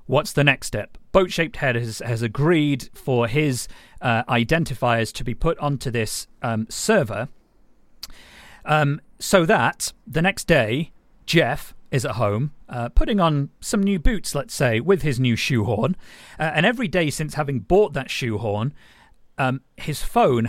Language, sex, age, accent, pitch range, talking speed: English, male, 40-59, British, 115-155 Hz, 160 wpm